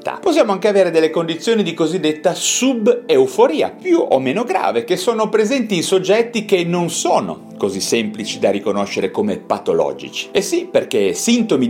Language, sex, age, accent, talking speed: Italian, male, 40-59, native, 155 wpm